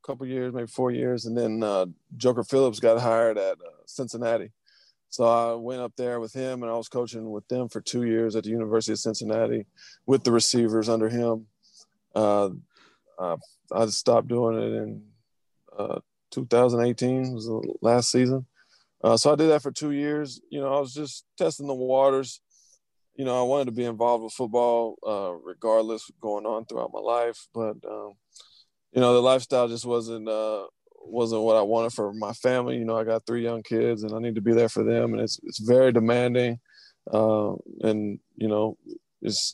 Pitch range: 110-125 Hz